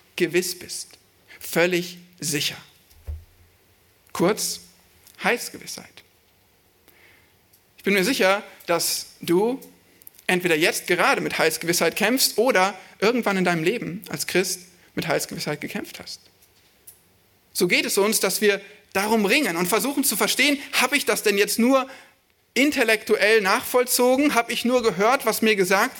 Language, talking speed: German, 130 wpm